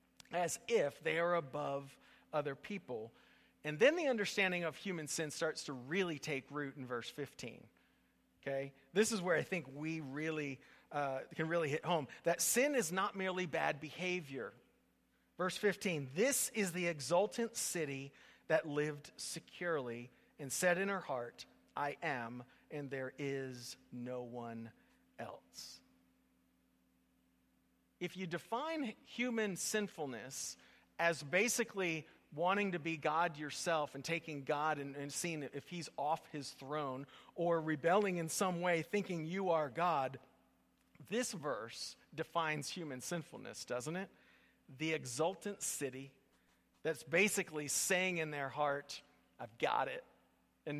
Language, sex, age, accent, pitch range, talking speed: English, male, 40-59, American, 135-180 Hz, 140 wpm